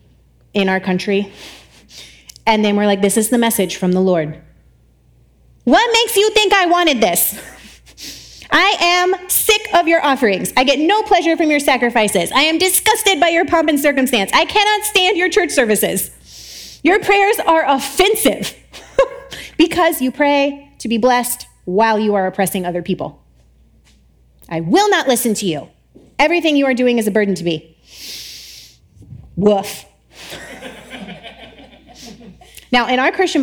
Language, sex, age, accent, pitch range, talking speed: English, female, 30-49, American, 200-325 Hz, 150 wpm